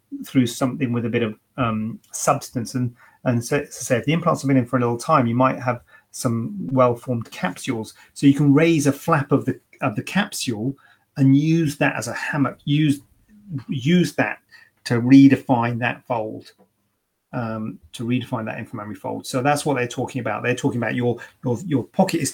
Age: 40-59